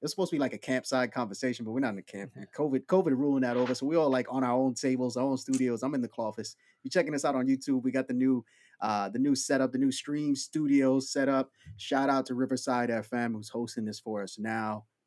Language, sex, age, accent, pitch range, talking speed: English, male, 20-39, American, 115-140 Hz, 265 wpm